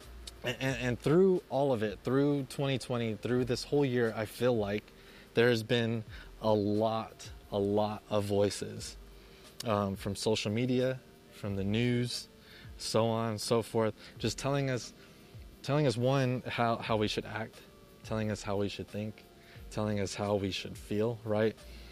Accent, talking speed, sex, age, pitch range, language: American, 165 wpm, male, 20-39, 100-115 Hz, English